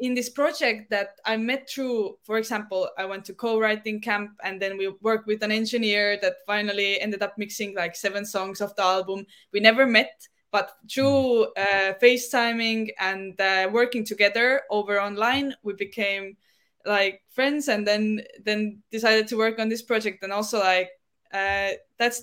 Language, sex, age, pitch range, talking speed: English, female, 20-39, 205-250 Hz, 170 wpm